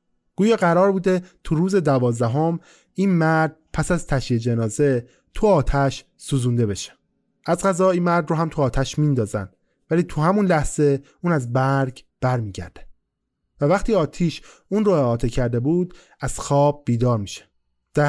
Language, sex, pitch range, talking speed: Persian, male, 120-170 Hz, 155 wpm